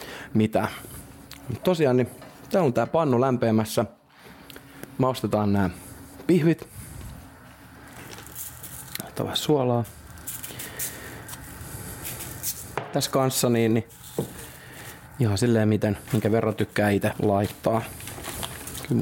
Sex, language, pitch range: male, Finnish, 110-140 Hz